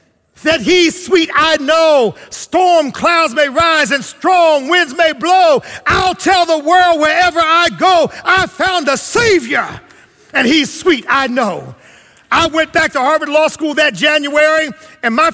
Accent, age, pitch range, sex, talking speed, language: American, 50-69, 310-365 Hz, male, 160 wpm, English